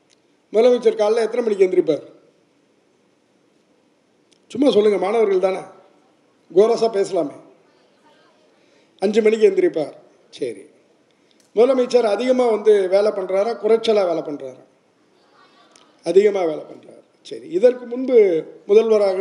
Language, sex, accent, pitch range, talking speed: Tamil, male, native, 190-265 Hz, 85 wpm